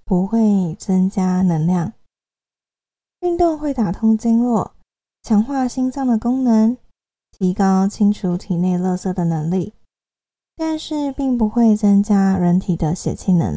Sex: female